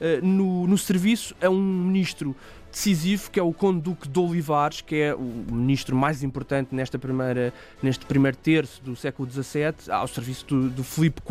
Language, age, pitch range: Portuguese, 20-39, 145-195 Hz